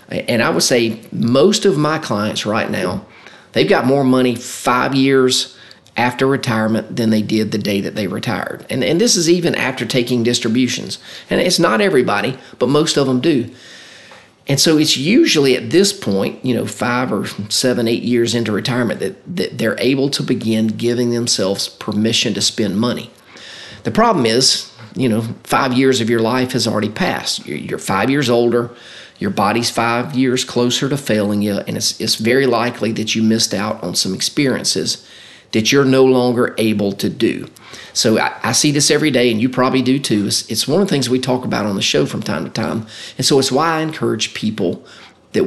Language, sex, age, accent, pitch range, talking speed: English, male, 40-59, American, 110-135 Hz, 200 wpm